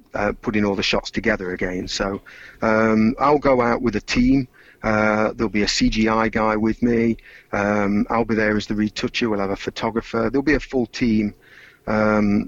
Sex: male